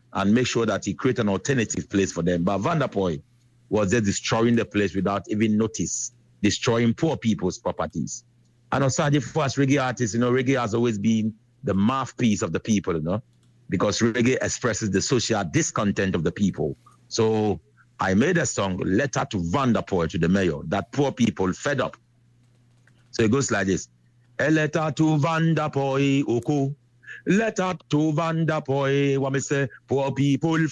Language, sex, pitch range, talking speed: Dutch, male, 120-165 Hz, 175 wpm